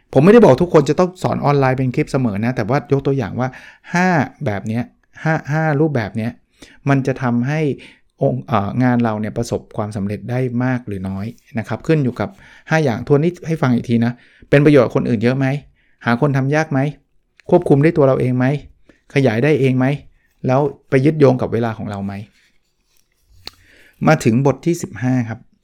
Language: Thai